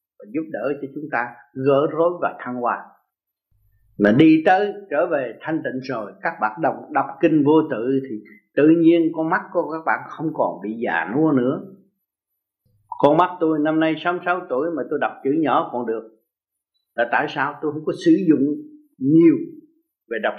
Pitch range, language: 135-200 Hz, Vietnamese